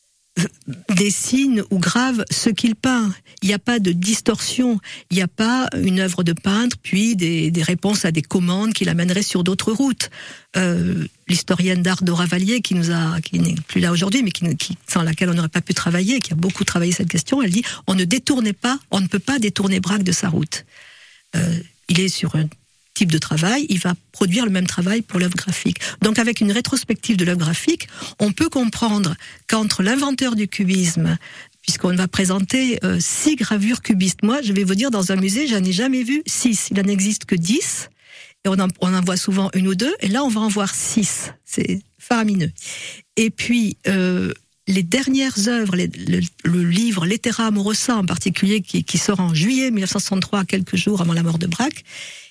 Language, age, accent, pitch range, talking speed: French, 50-69, French, 180-220 Hz, 205 wpm